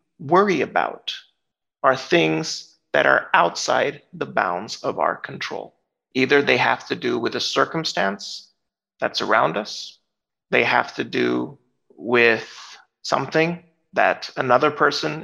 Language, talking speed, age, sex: English, 125 wpm, 30-49, male